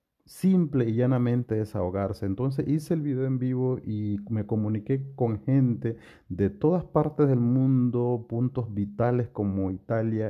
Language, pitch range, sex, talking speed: Spanish, 100-130 Hz, male, 140 wpm